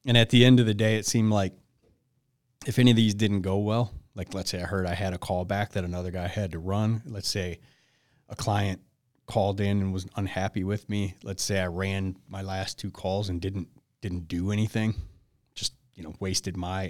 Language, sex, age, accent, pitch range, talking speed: English, male, 30-49, American, 90-115 Hz, 220 wpm